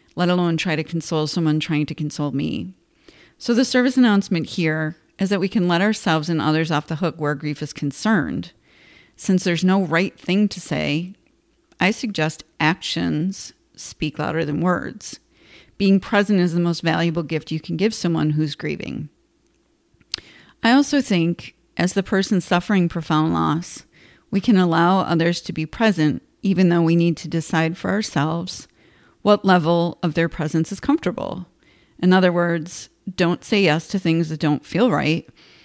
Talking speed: 170 wpm